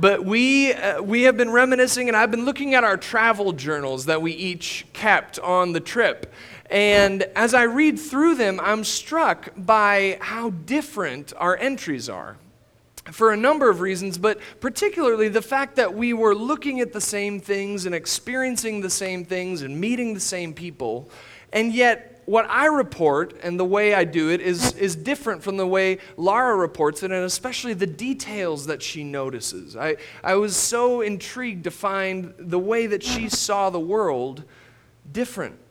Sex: male